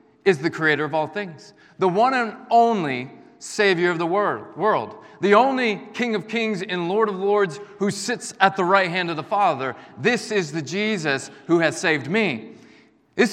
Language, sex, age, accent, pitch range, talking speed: English, male, 30-49, American, 140-210 Hz, 185 wpm